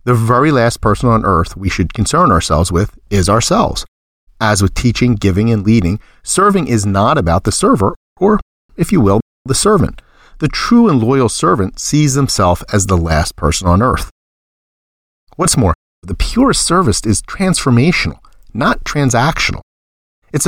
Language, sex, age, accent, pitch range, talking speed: English, male, 40-59, American, 85-120 Hz, 160 wpm